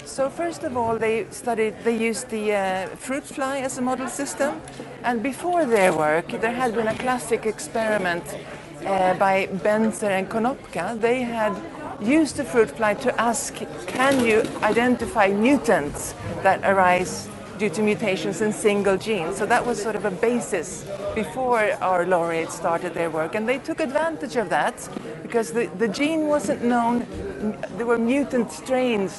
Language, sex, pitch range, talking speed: English, female, 195-245 Hz, 165 wpm